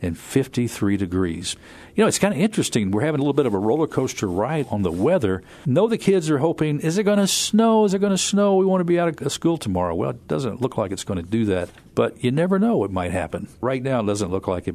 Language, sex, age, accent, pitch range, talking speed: English, male, 50-69, American, 100-145 Hz, 280 wpm